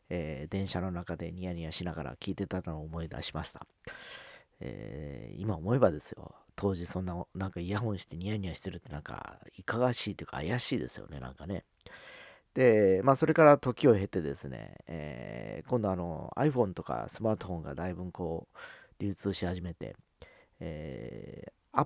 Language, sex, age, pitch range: Japanese, male, 40-59, 85-110 Hz